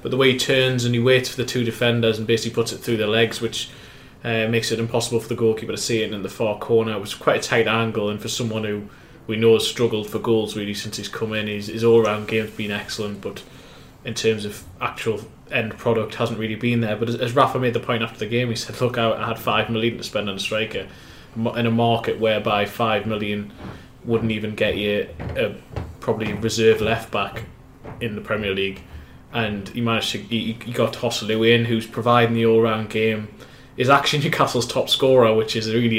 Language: English